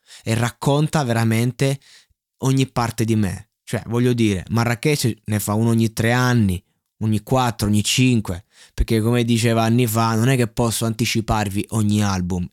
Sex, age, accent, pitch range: male, 20-39, native, 105-125 Hz